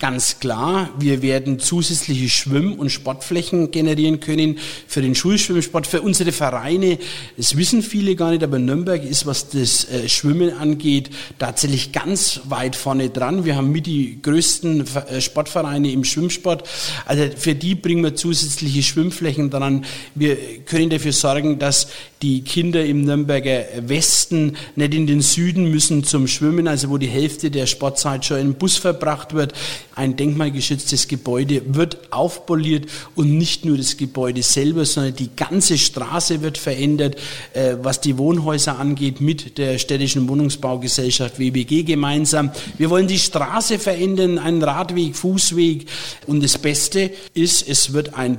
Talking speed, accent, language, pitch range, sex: 150 wpm, German, German, 135-165 Hz, male